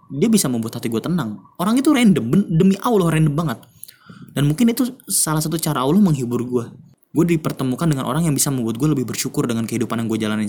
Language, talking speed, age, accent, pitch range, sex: Indonesian, 210 wpm, 20-39, native, 135-185 Hz, male